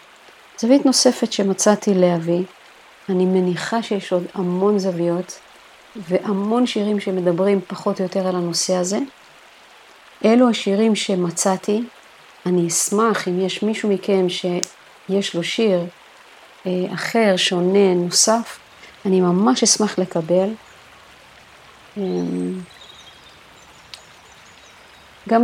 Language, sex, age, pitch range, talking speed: Hebrew, female, 50-69, 175-210 Hz, 90 wpm